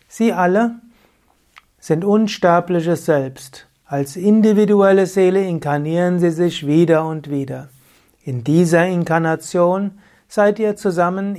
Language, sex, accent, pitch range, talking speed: German, male, German, 145-185 Hz, 105 wpm